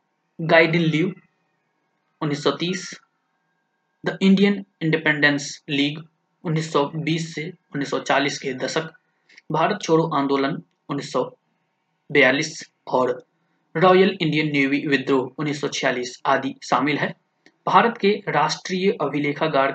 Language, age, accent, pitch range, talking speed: Hindi, 20-39, native, 140-180 Hz, 90 wpm